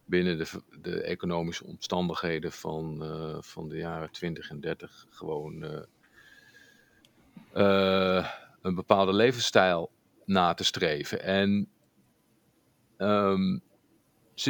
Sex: male